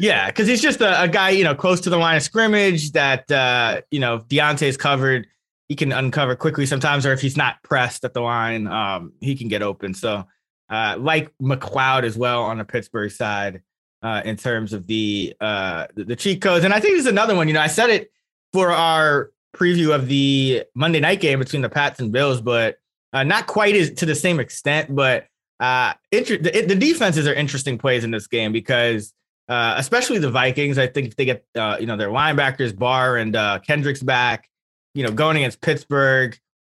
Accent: American